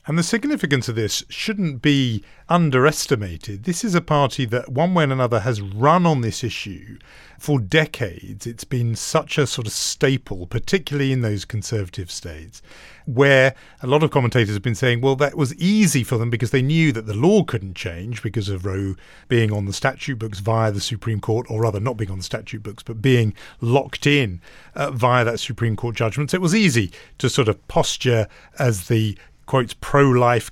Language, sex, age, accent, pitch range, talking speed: English, male, 40-59, British, 115-150 Hz, 195 wpm